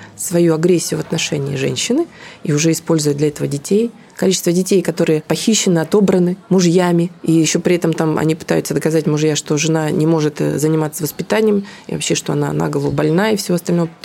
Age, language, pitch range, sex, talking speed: 20-39, Russian, 160-200 Hz, female, 175 wpm